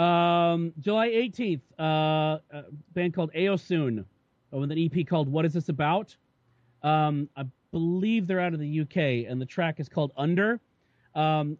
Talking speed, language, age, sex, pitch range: 160 wpm, English, 40-59, male, 145-185 Hz